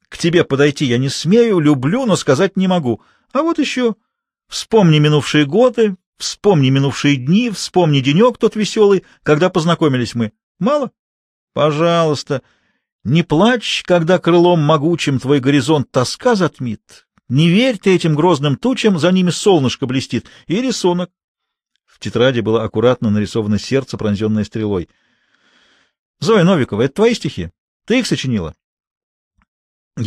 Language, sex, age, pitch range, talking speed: Russian, male, 40-59, 125-200 Hz, 135 wpm